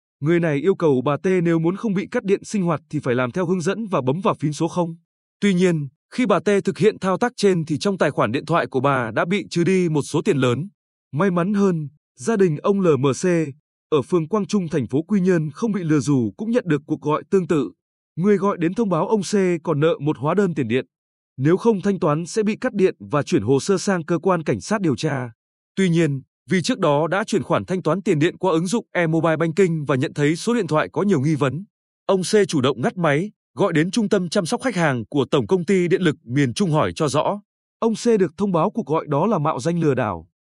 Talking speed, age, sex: 265 wpm, 20-39, male